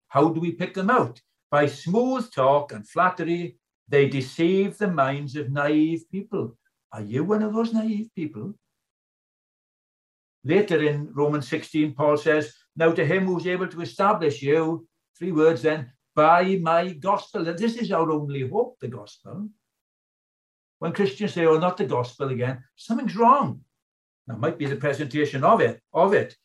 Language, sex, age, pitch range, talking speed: English, male, 60-79, 150-205 Hz, 165 wpm